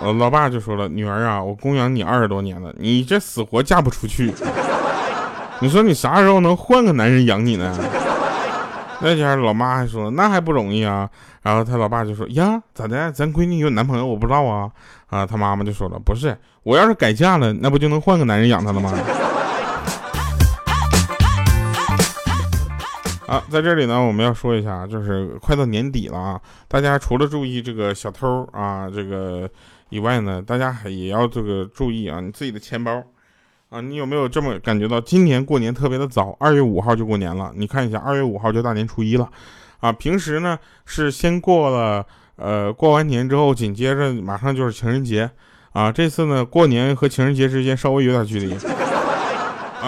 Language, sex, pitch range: Chinese, male, 105-140 Hz